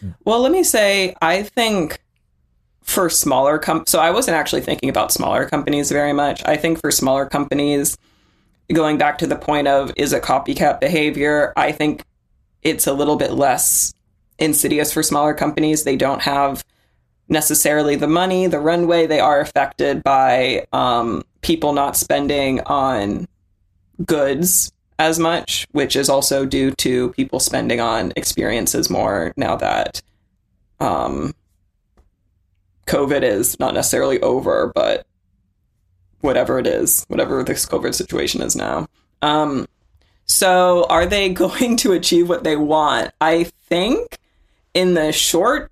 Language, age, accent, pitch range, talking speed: English, 20-39, American, 110-170 Hz, 140 wpm